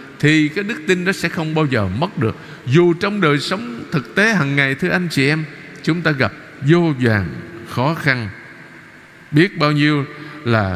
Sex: male